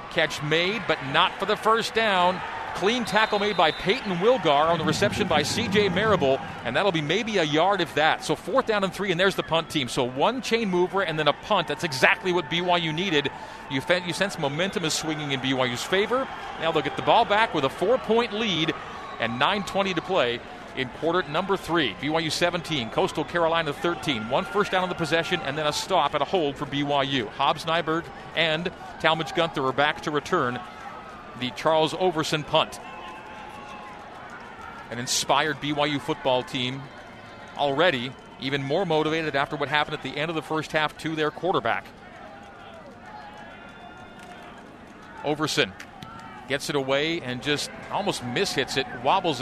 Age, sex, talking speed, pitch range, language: 40-59, male, 170 wpm, 145-195 Hz, English